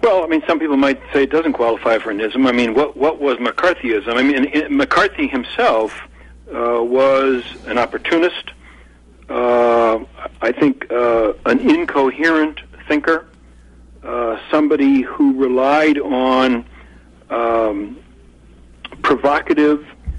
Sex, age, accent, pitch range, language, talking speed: male, 60-79, American, 120-145 Hz, English, 120 wpm